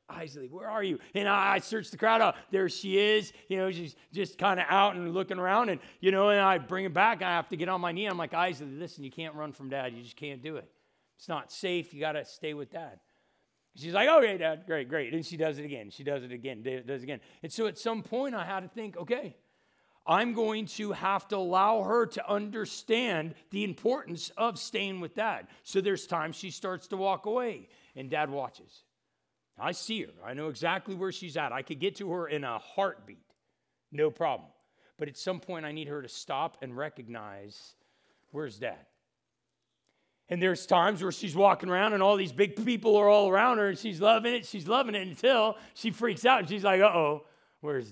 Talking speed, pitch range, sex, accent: 225 wpm, 155-210 Hz, male, American